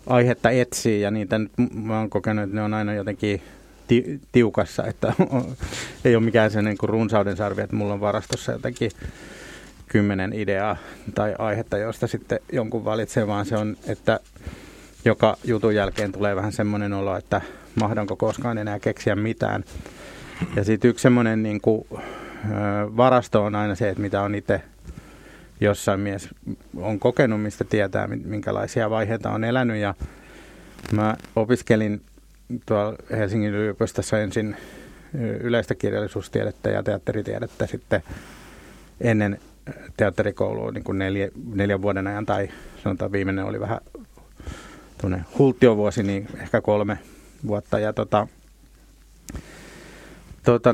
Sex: male